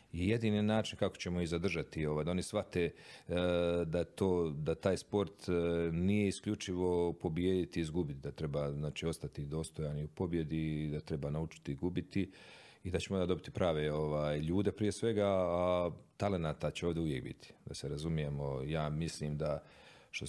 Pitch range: 75-95 Hz